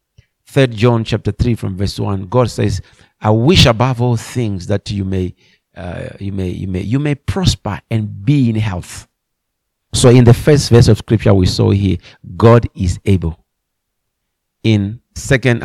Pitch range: 100-120 Hz